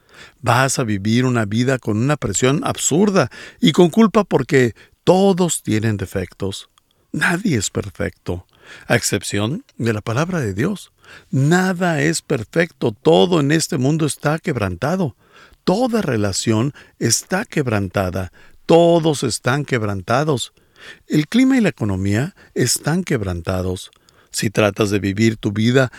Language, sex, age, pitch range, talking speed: Spanish, male, 50-69, 105-165 Hz, 125 wpm